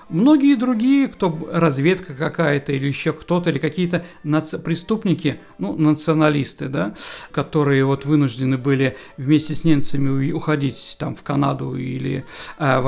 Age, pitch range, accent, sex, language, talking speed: 50-69, 145-185 Hz, native, male, Russian, 135 wpm